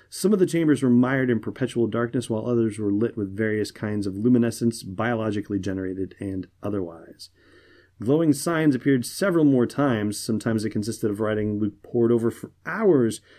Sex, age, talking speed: male, 30-49, 170 wpm